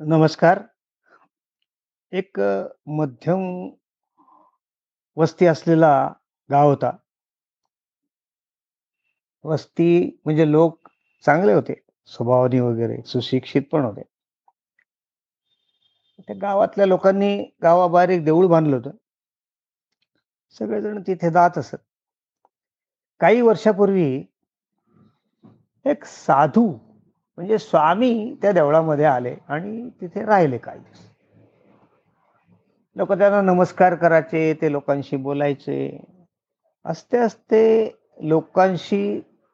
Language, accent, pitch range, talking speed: Marathi, native, 145-190 Hz, 80 wpm